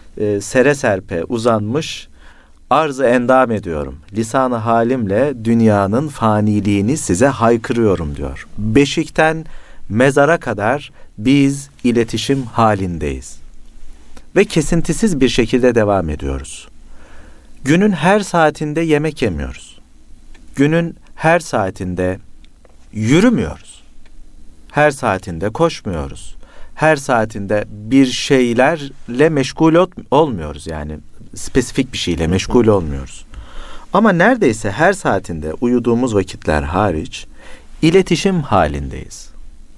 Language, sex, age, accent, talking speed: Turkish, male, 50-69, native, 90 wpm